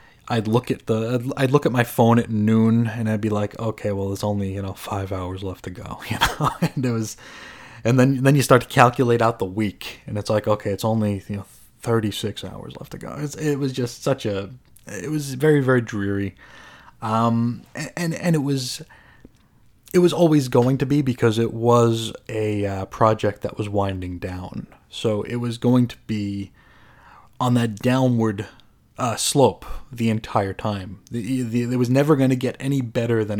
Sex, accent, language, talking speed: male, American, English, 210 wpm